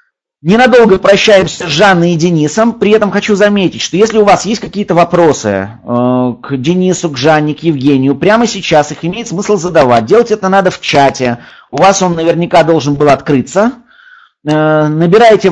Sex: male